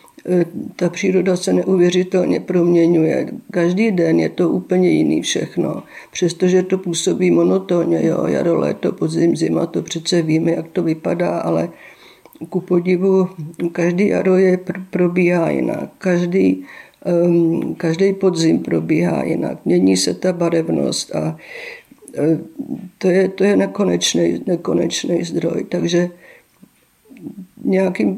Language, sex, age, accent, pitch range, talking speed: Czech, female, 50-69, native, 170-195 Hz, 115 wpm